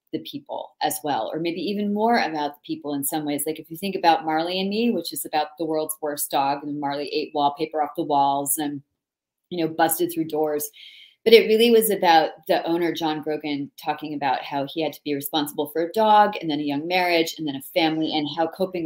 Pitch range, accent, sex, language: 150-180 Hz, American, female, English